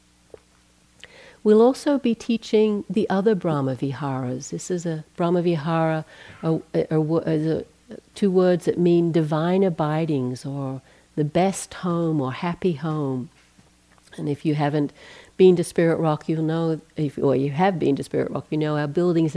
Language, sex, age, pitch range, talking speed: English, female, 60-79, 145-190 Hz, 150 wpm